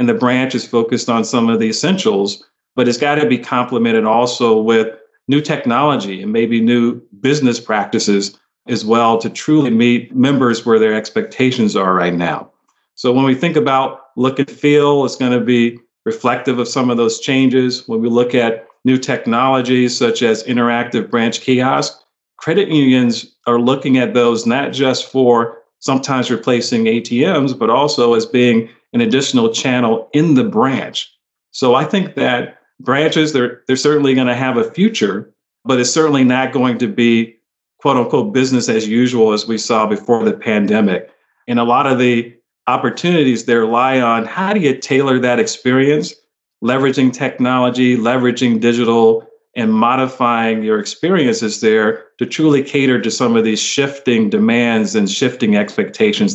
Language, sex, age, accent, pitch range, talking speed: English, male, 40-59, American, 115-140 Hz, 165 wpm